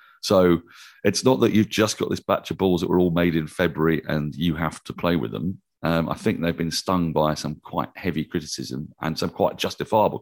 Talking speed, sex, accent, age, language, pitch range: 230 wpm, male, British, 40-59, English, 75-95 Hz